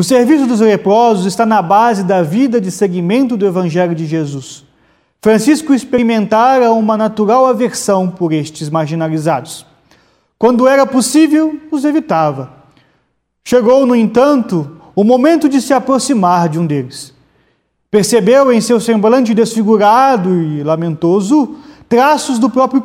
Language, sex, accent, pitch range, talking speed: Portuguese, male, Brazilian, 170-255 Hz, 130 wpm